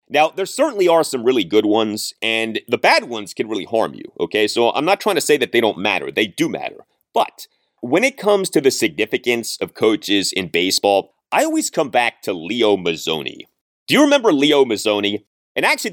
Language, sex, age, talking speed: English, male, 30-49, 205 wpm